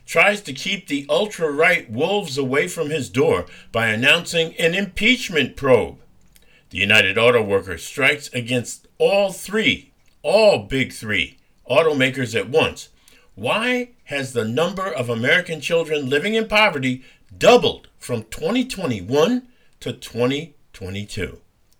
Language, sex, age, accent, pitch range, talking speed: English, male, 50-69, American, 125-195 Hz, 120 wpm